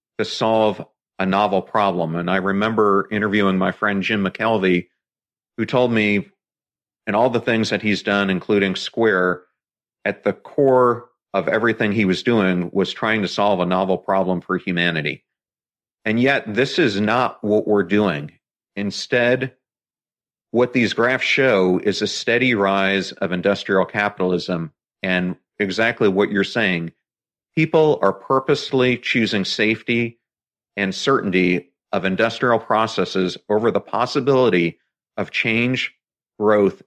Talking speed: 135 wpm